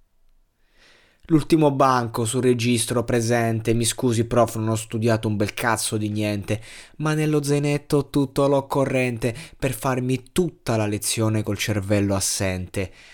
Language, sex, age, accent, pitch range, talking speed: Italian, male, 20-39, native, 100-120 Hz, 135 wpm